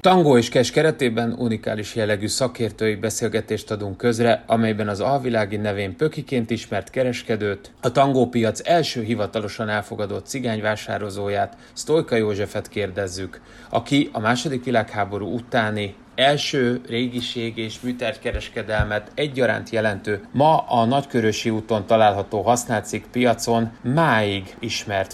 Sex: male